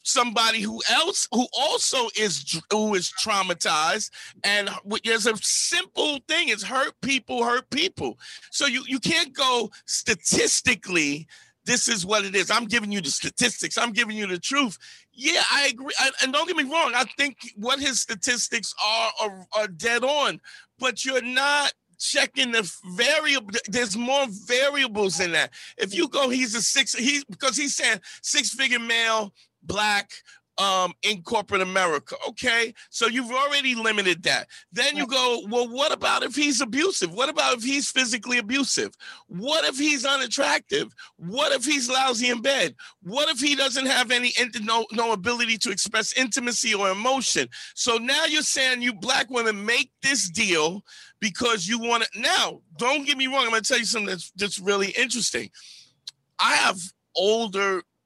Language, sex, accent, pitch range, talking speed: English, male, American, 215-275 Hz, 175 wpm